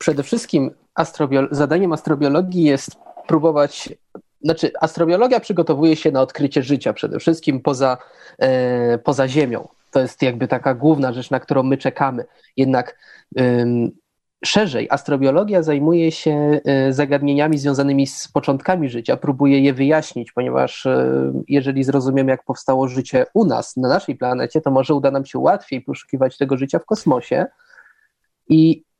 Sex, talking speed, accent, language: male, 130 wpm, native, Polish